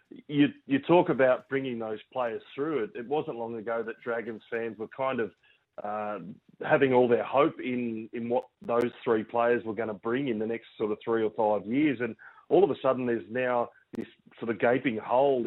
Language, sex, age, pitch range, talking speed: English, male, 30-49, 115-135 Hz, 215 wpm